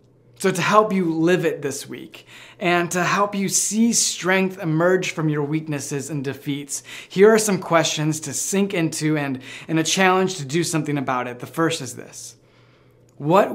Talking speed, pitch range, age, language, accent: 180 wpm, 135-180 Hz, 20-39, English, American